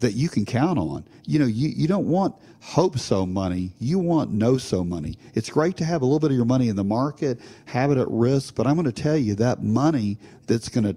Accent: American